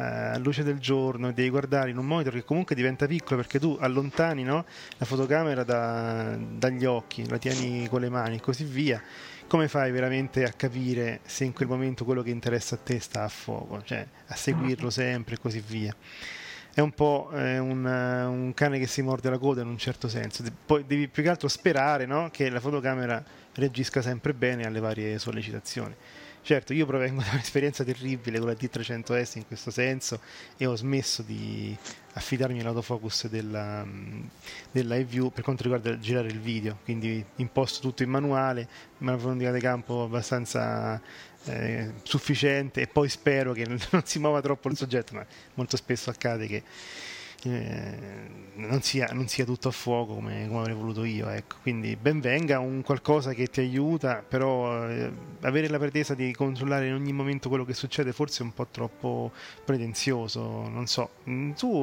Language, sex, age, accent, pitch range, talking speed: Italian, male, 30-49, native, 115-135 Hz, 180 wpm